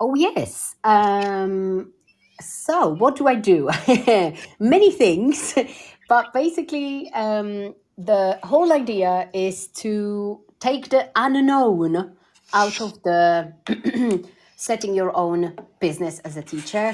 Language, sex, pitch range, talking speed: English, female, 175-230 Hz, 110 wpm